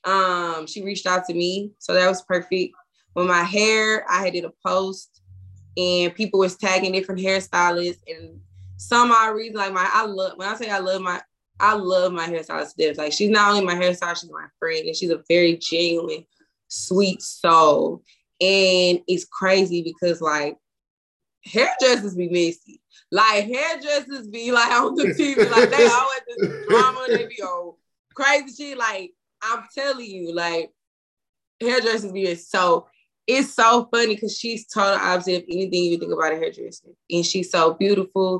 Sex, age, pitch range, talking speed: female, 20-39, 175-215 Hz, 170 wpm